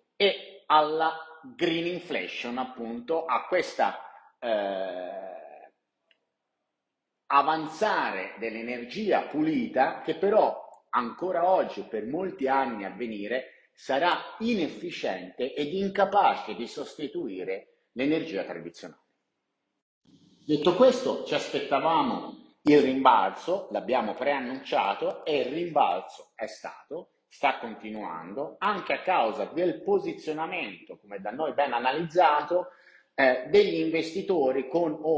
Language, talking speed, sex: Italian, 95 wpm, male